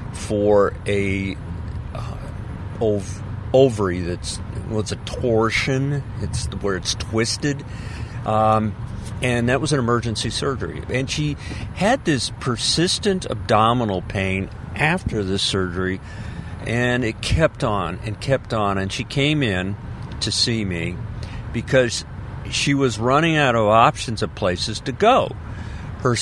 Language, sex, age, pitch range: English, male, 50-69, 100-125 Hz